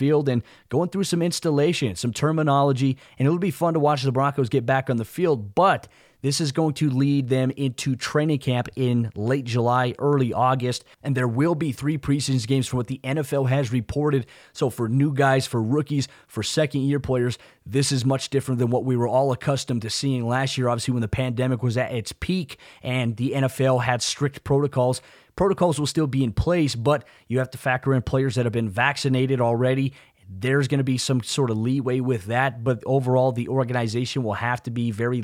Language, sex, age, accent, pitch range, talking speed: English, male, 20-39, American, 120-135 Hz, 210 wpm